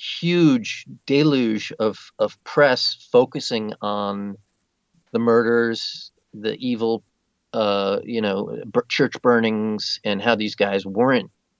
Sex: male